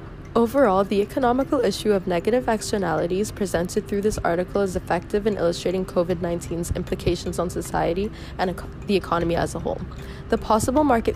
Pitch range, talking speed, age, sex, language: 175-210 Hz, 150 wpm, 20-39, female, English